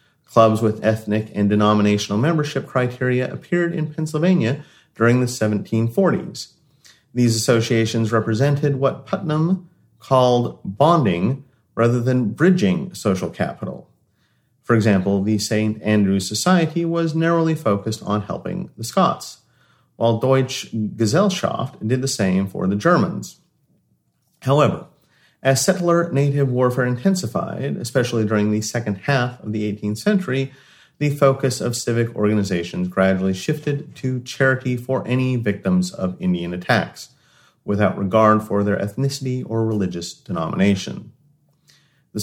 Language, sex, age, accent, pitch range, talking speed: English, male, 40-59, American, 105-140 Hz, 120 wpm